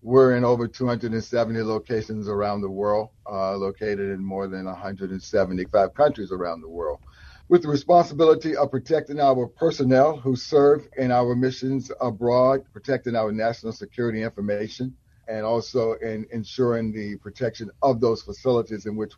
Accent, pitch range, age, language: American, 105-125 Hz, 50-69, English